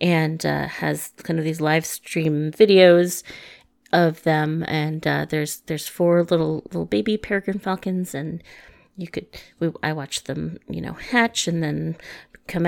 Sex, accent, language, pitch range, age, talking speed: female, American, English, 155-185 Hz, 30-49, 155 wpm